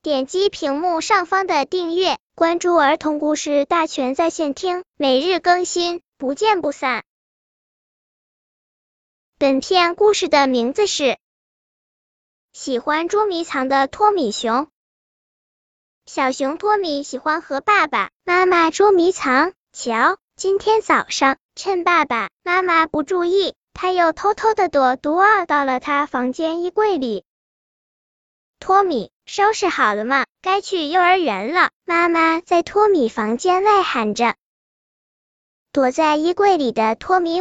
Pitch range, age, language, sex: 280-370 Hz, 10-29, Chinese, male